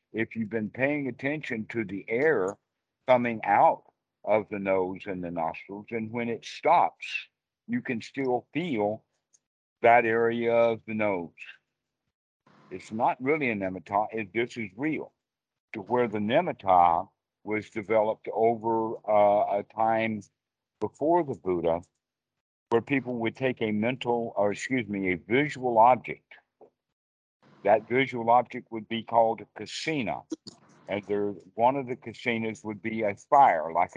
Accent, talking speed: American, 145 wpm